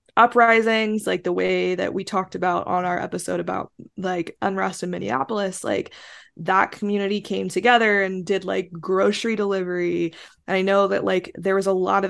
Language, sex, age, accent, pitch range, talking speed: English, female, 20-39, American, 180-205 Hz, 180 wpm